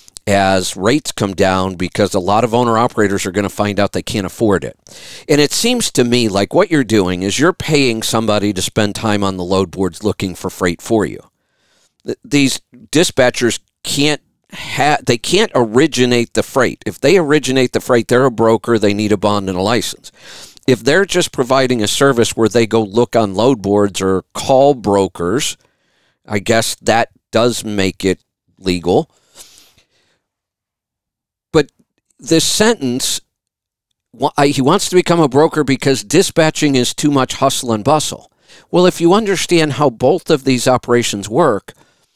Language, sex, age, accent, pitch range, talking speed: English, male, 50-69, American, 105-150 Hz, 170 wpm